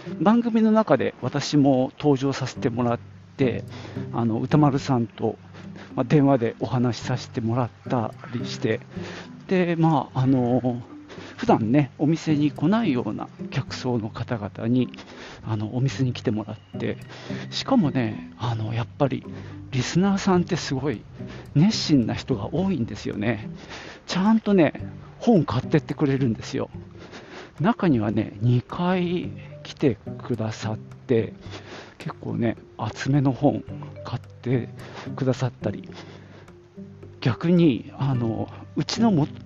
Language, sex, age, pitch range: Japanese, male, 40-59, 115-160 Hz